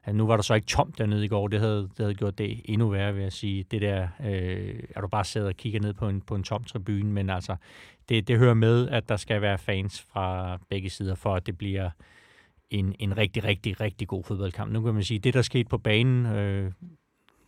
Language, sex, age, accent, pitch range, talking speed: Danish, male, 30-49, native, 100-115 Hz, 245 wpm